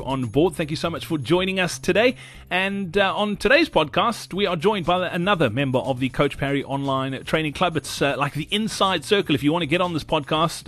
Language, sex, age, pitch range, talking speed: English, male, 30-49, 135-170 Hz, 235 wpm